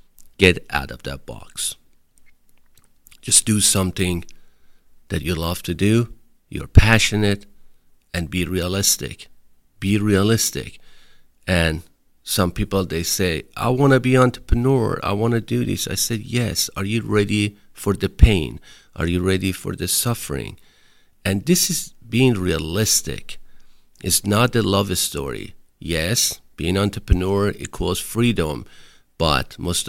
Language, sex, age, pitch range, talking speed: English, male, 50-69, 90-115 Hz, 135 wpm